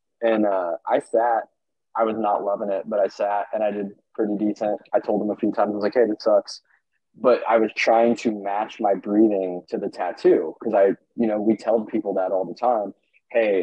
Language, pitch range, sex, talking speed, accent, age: English, 95-115 Hz, male, 230 wpm, American, 20-39